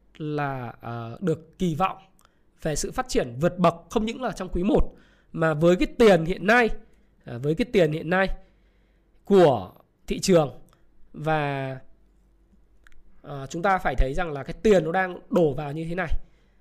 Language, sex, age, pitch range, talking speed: Vietnamese, male, 20-39, 180-255 Hz, 175 wpm